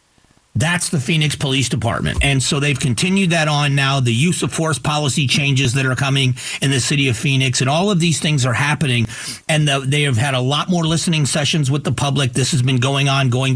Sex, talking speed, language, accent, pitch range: male, 225 wpm, English, American, 125-160 Hz